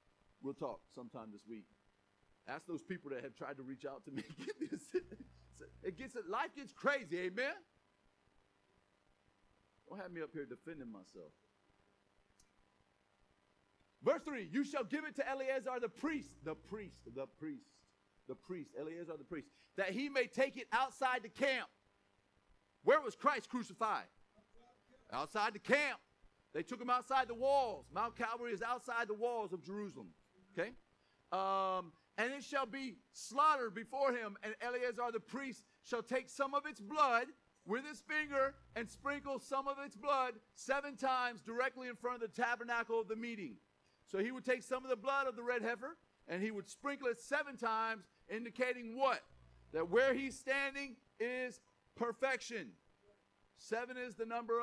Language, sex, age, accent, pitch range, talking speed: English, male, 40-59, American, 165-260 Hz, 165 wpm